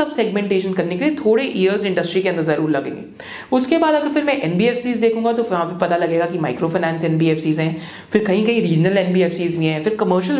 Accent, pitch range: native, 170-235 Hz